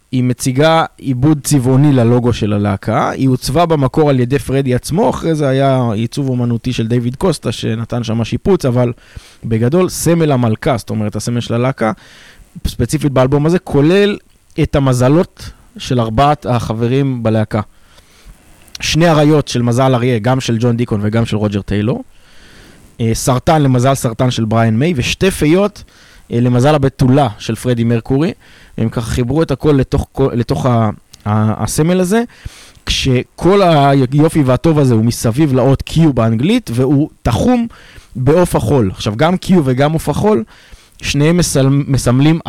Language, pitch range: Hebrew, 115-145 Hz